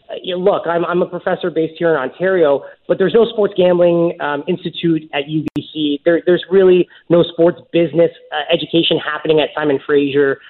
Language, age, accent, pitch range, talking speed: English, 30-49, American, 150-190 Hz, 190 wpm